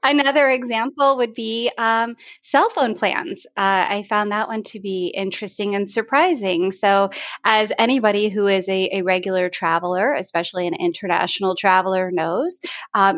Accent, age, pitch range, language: American, 20-39, 185-225 Hz, English